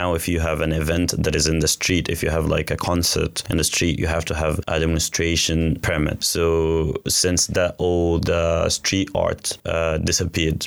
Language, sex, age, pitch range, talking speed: English, male, 20-39, 80-90 Hz, 195 wpm